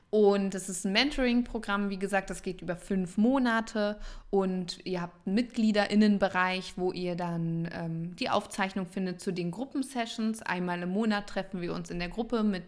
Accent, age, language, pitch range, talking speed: German, 20-39, German, 180-215 Hz, 175 wpm